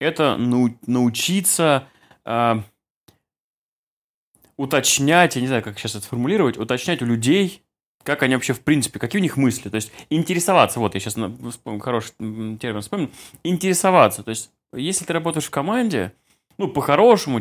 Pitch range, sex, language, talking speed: 110-145 Hz, male, Russian, 145 wpm